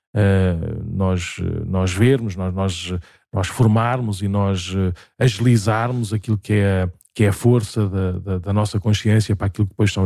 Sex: male